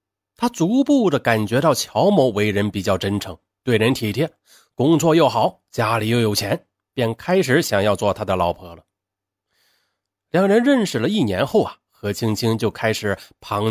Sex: male